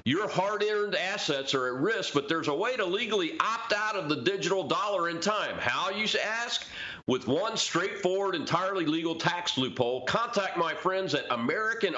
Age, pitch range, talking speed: 40-59, 145-195 Hz, 175 wpm